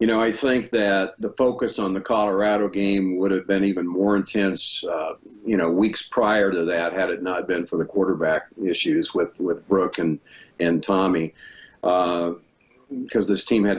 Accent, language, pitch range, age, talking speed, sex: American, English, 90-110 Hz, 50-69, 185 wpm, male